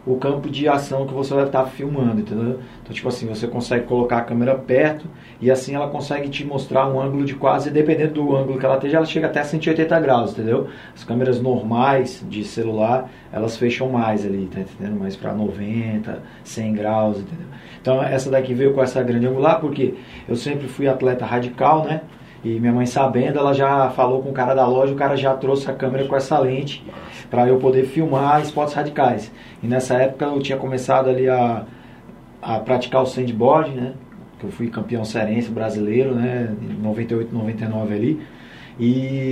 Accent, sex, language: Brazilian, male, Portuguese